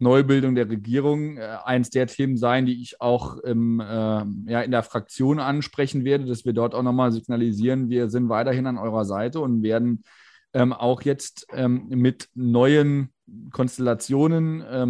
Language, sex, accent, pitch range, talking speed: German, male, German, 115-140 Hz, 160 wpm